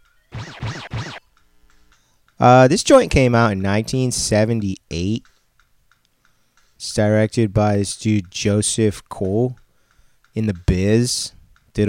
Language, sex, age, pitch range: English, male, 30-49, 100-115 Hz